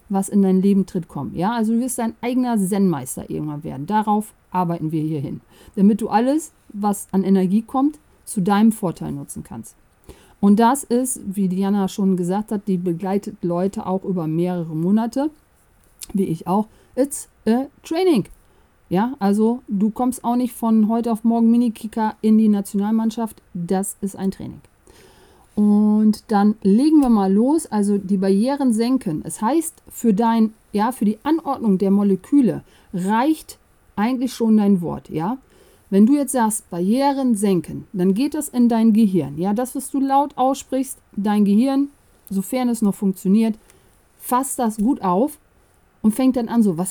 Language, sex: German, female